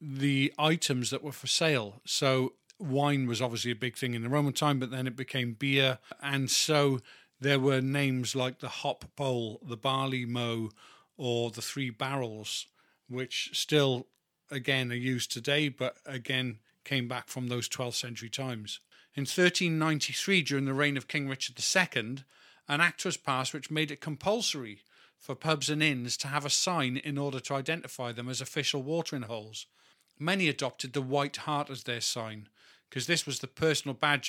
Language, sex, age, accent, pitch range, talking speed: English, male, 40-59, British, 125-150 Hz, 175 wpm